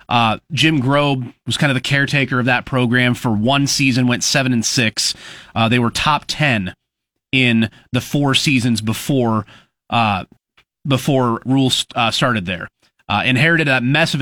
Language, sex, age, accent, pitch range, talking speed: English, male, 30-49, American, 115-140 Hz, 170 wpm